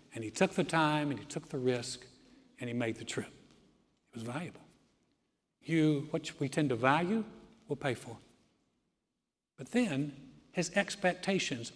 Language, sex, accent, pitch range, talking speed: English, male, American, 140-190 Hz, 160 wpm